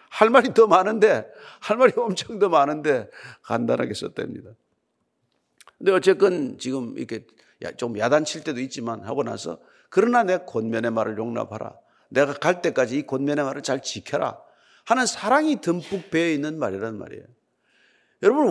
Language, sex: Korean, male